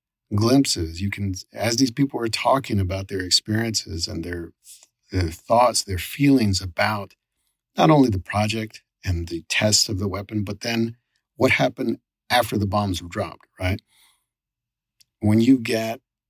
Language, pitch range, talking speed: English, 95-120 Hz, 150 wpm